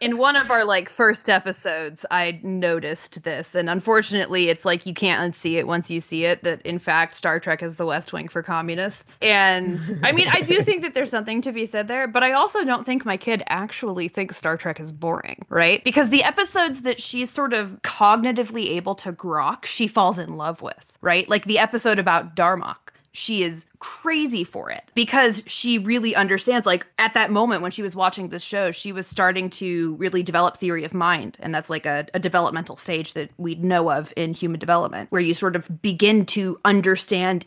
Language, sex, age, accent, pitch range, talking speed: English, female, 20-39, American, 170-215 Hz, 210 wpm